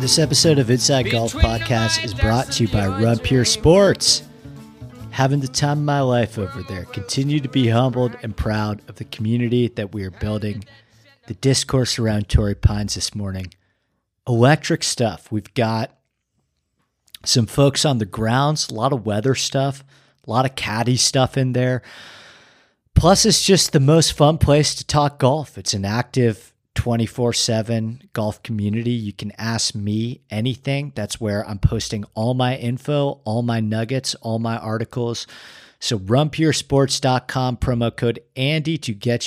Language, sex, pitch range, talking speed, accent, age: English, male, 110-130 Hz, 155 wpm, American, 40-59